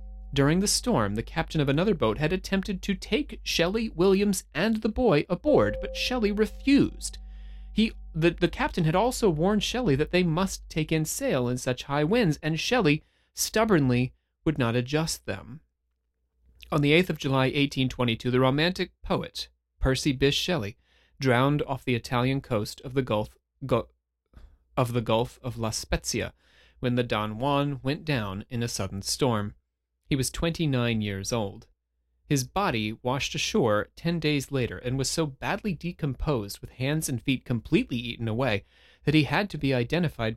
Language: English